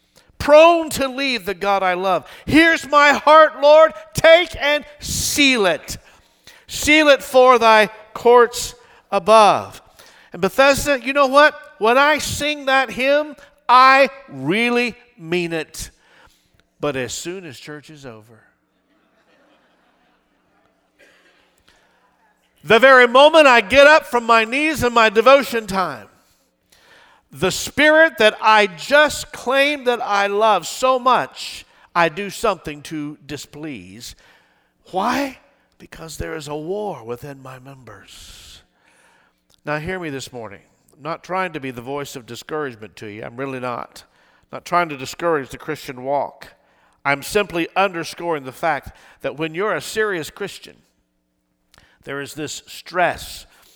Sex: male